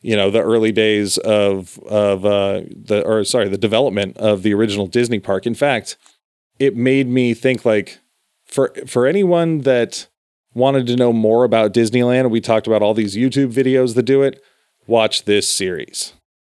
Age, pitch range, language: 30-49, 105-135 Hz, English